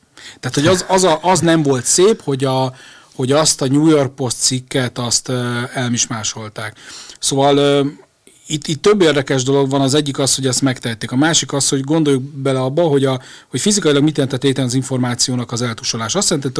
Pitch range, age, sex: 125-150 Hz, 40-59, male